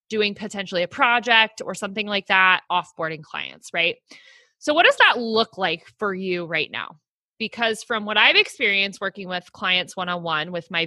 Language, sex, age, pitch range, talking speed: English, female, 20-39, 185-235 Hz, 190 wpm